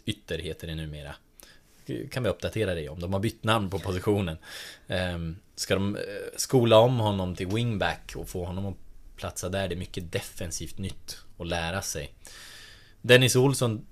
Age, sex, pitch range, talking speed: 20-39, male, 90-115 Hz, 165 wpm